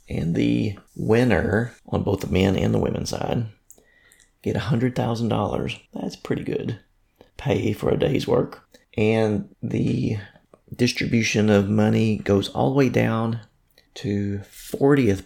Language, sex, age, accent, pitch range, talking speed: English, male, 30-49, American, 100-120 Hz, 140 wpm